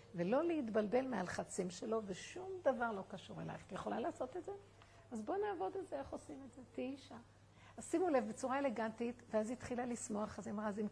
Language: Hebrew